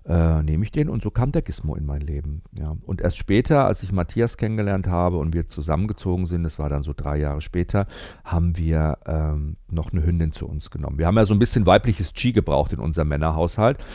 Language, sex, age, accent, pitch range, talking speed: German, male, 40-59, German, 80-105 Hz, 225 wpm